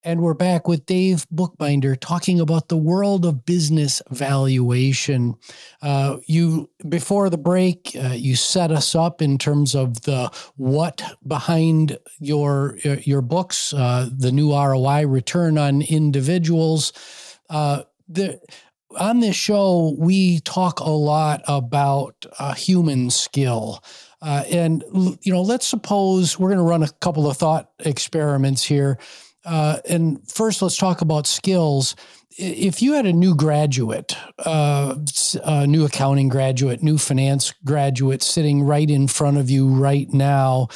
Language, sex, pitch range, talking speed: English, male, 140-170 Hz, 145 wpm